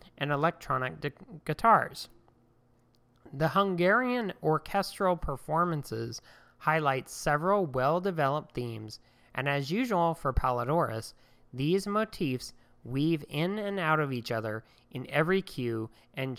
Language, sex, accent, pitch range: English, male, American, 120-155 Hz